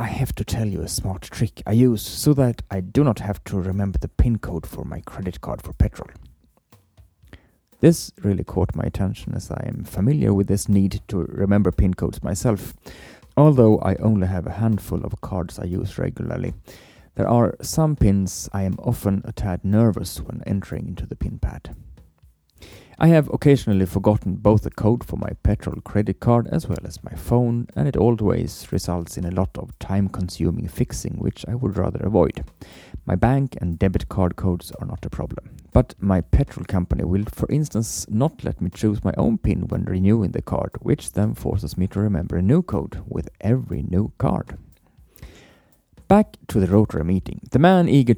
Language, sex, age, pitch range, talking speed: English, male, 30-49, 90-115 Hz, 190 wpm